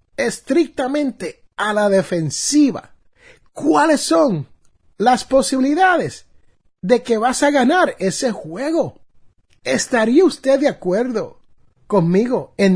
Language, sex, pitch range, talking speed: Spanish, male, 190-310 Hz, 100 wpm